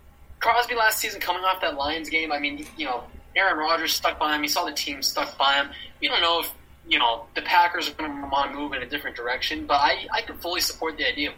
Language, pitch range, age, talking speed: English, 110-180 Hz, 20-39, 260 wpm